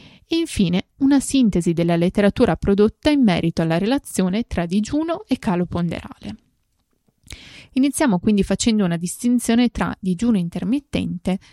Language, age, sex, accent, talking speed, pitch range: Italian, 20-39, female, native, 125 wpm, 180-245 Hz